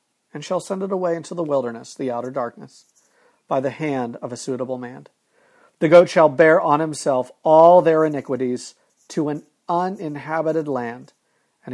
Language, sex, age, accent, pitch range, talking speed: English, male, 50-69, American, 140-180 Hz, 165 wpm